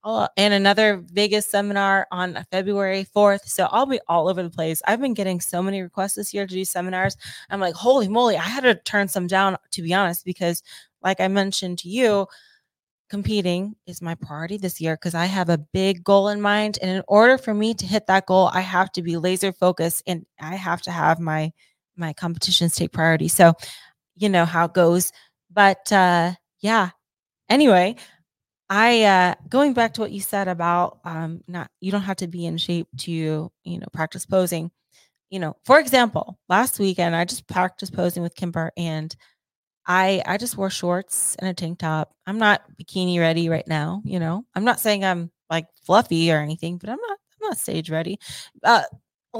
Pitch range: 170-205 Hz